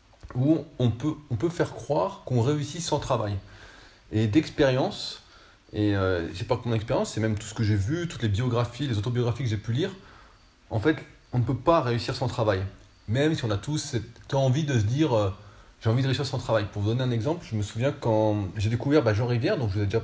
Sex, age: male, 30-49